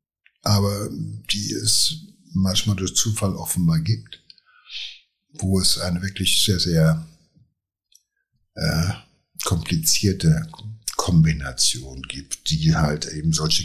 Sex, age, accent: male, 60-79, German